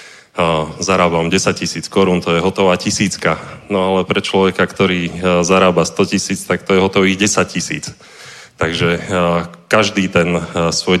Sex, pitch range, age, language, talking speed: male, 90-100 Hz, 30-49, Czech, 140 wpm